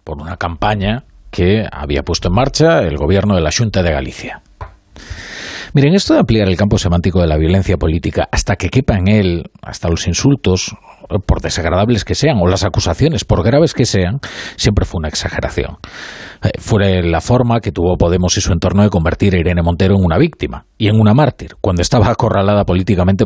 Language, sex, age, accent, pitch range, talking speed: Spanish, male, 40-59, Spanish, 85-110 Hz, 190 wpm